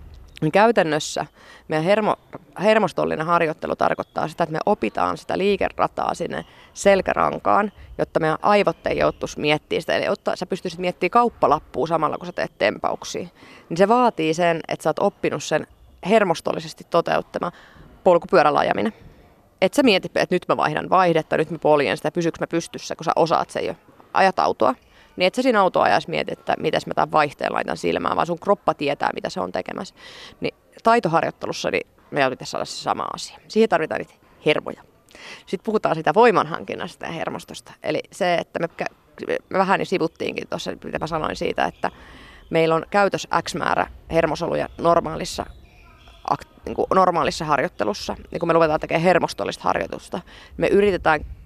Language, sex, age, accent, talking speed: Finnish, female, 30-49, native, 160 wpm